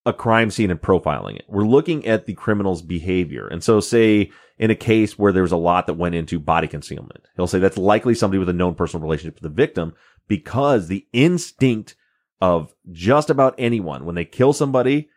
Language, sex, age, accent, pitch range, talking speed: English, male, 30-49, American, 90-115 Hz, 205 wpm